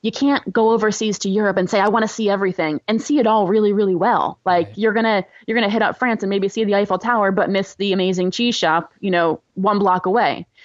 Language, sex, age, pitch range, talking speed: English, female, 20-39, 170-220 Hz, 260 wpm